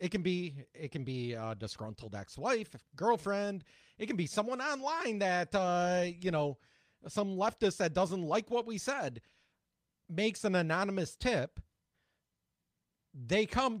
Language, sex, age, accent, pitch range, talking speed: English, male, 30-49, American, 160-205 Hz, 145 wpm